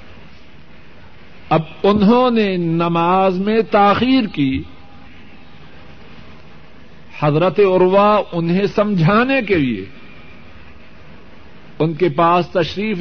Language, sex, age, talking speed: Urdu, male, 60-79, 80 wpm